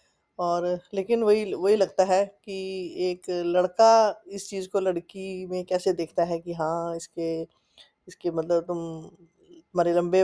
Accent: native